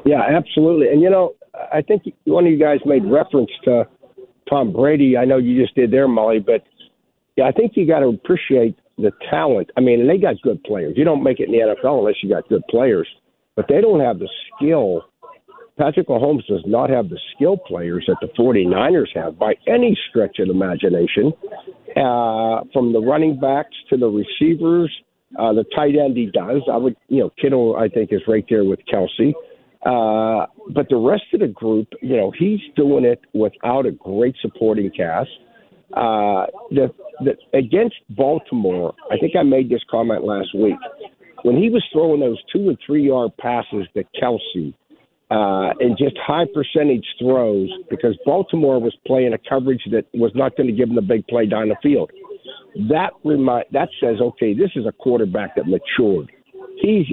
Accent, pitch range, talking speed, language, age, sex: American, 115-175 Hz, 190 wpm, English, 60-79, male